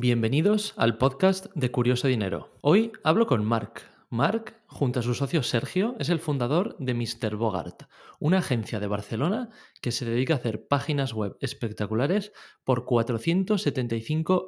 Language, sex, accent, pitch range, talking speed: Spanish, male, Spanish, 120-160 Hz, 150 wpm